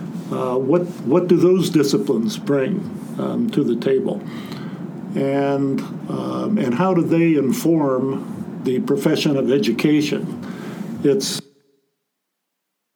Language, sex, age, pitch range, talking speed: English, male, 50-69, 140-200 Hz, 105 wpm